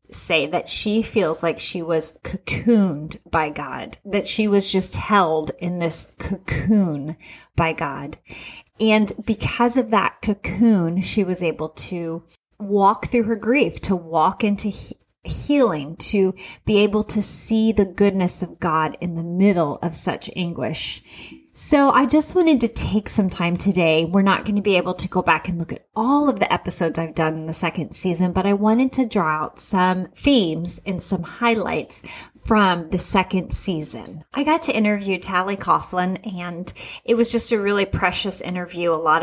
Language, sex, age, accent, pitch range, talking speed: English, female, 30-49, American, 170-215 Hz, 175 wpm